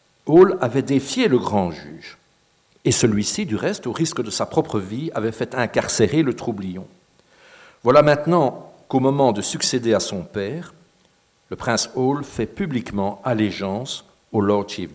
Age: 60-79